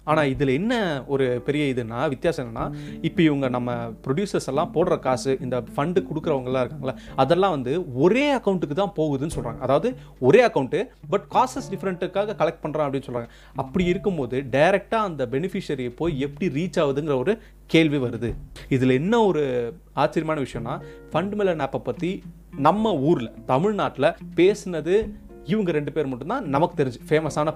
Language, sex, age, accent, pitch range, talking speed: Tamil, male, 30-49, native, 135-175 Hz, 140 wpm